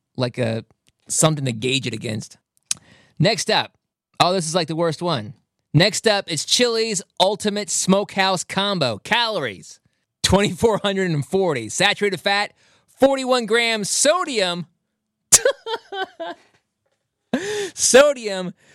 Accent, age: American, 20-39